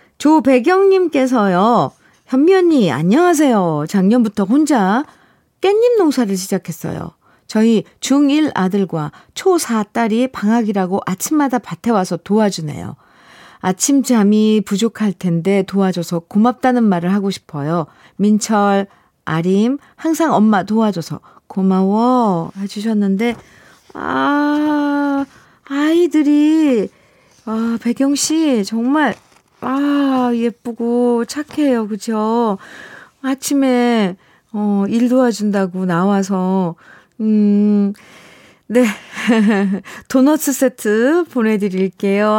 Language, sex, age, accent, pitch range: Korean, female, 40-59, native, 200-285 Hz